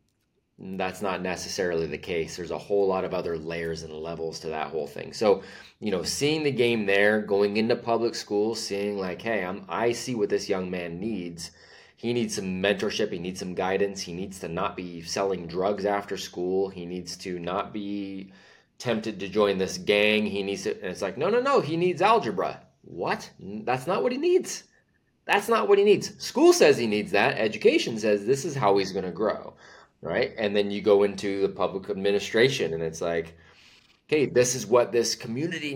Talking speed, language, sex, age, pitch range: 205 wpm, English, male, 20-39, 95-130 Hz